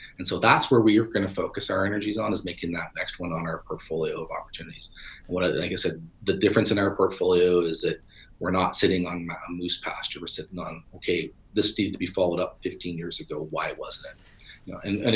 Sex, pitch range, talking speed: male, 90-105 Hz, 240 wpm